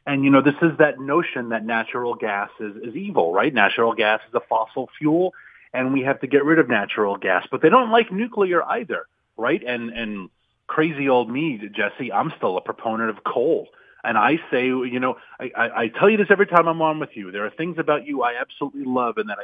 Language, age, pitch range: English, 30-49, 110-155 Hz